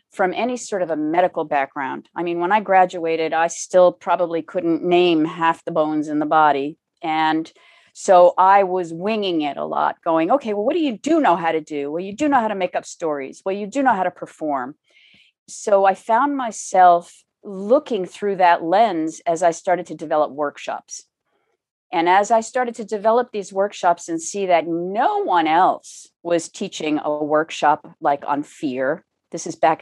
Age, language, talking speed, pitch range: 50-69, English, 195 wpm, 160-200 Hz